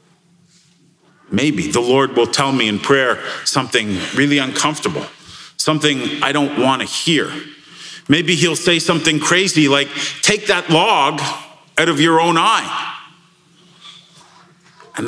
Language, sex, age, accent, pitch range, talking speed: English, male, 50-69, American, 140-175 Hz, 125 wpm